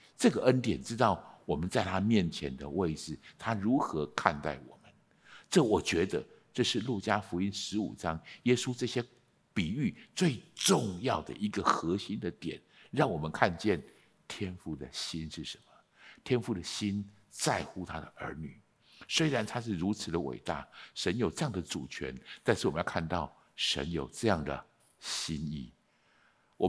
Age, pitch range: 60-79, 95-150 Hz